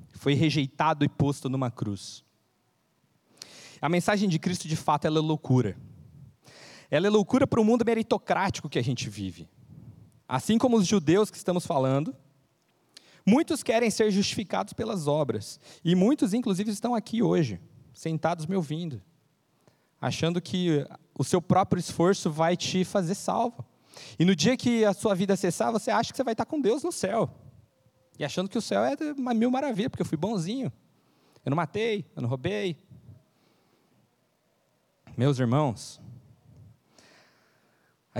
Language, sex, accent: Portuguese, male, Brazilian